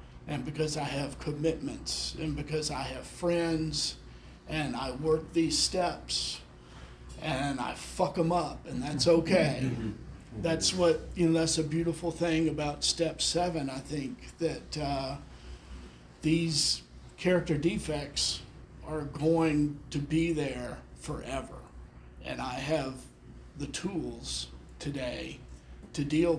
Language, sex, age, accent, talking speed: English, male, 50-69, American, 125 wpm